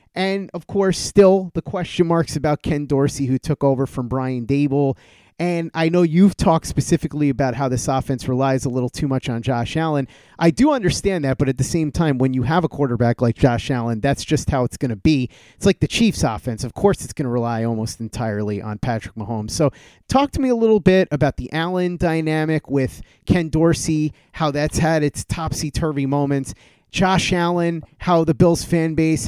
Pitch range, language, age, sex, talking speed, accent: 130-165 Hz, English, 30-49, male, 205 wpm, American